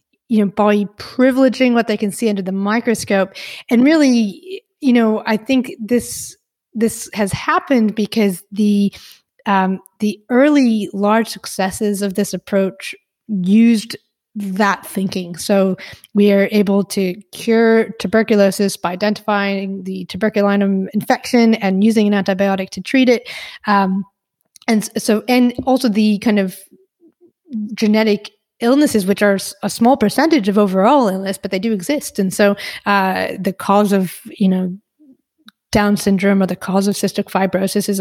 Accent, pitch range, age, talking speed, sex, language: American, 195-230 Hz, 20-39, 145 wpm, female, English